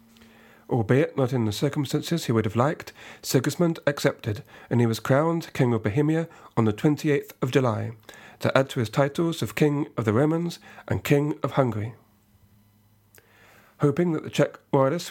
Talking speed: 165 wpm